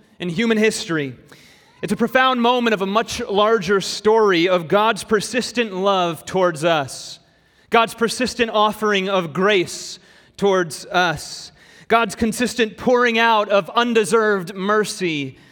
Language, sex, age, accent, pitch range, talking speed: English, male, 30-49, American, 180-220 Hz, 125 wpm